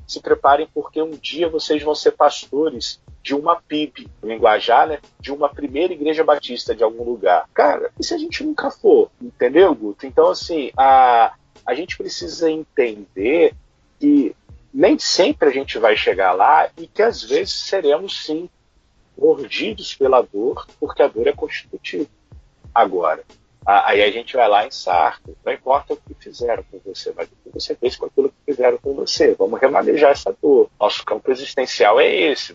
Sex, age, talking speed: male, 50-69, 175 wpm